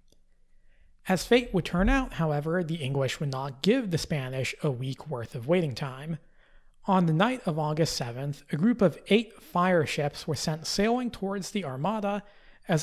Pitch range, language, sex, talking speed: 140-195 Hz, English, male, 180 wpm